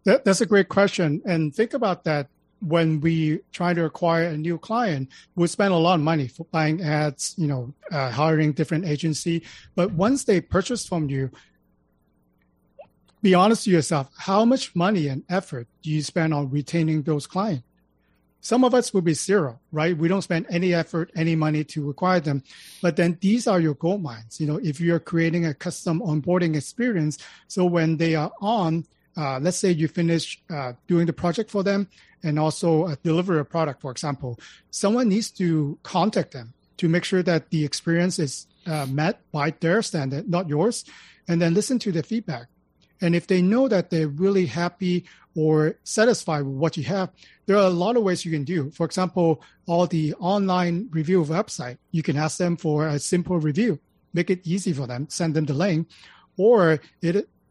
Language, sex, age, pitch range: English, male, 40-59, 155-185 Hz